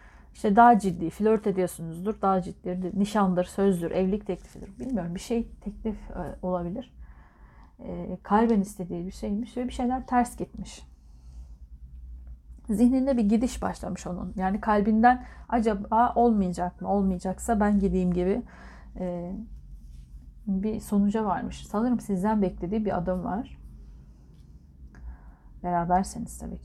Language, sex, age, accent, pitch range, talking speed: Turkish, female, 40-59, native, 175-230 Hz, 115 wpm